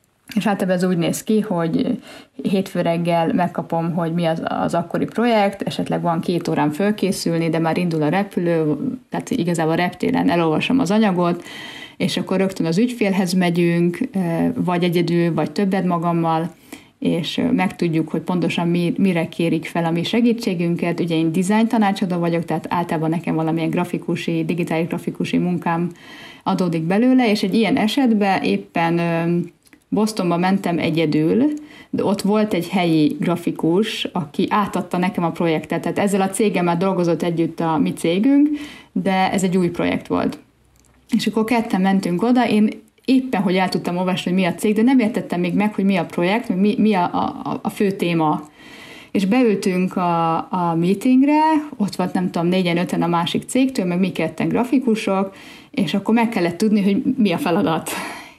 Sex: female